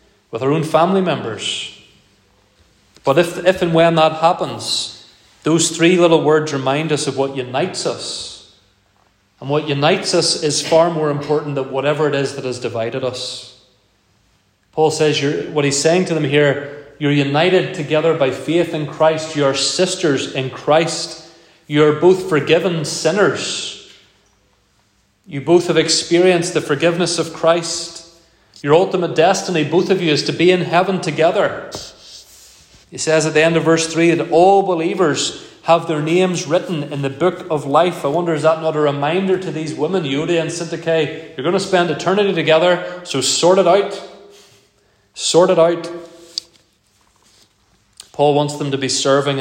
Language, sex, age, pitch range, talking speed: English, male, 30-49, 130-165 Hz, 165 wpm